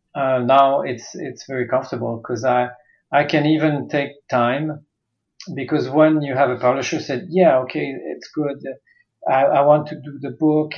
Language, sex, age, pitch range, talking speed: English, male, 40-59, 125-150 Hz, 175 wpm